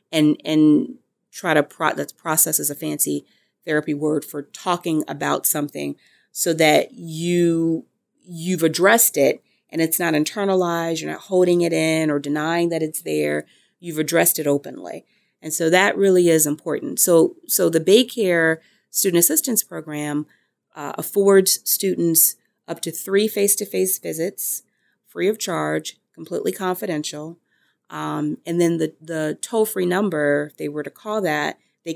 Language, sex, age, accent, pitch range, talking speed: English, female, 30-49, American, 150-185 Hz, 150 wpm